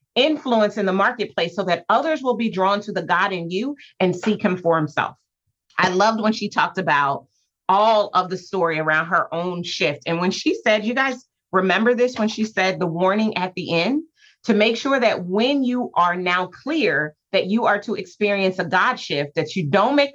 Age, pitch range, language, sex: 30-49, 175-225 Hz, English, female